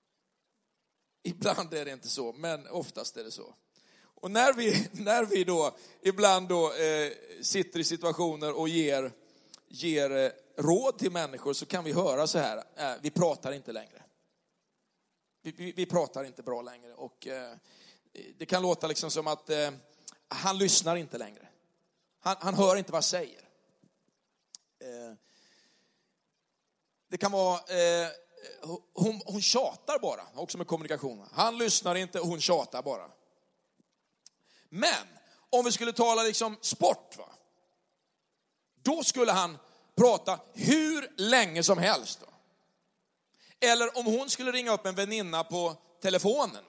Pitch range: 160-220 Hz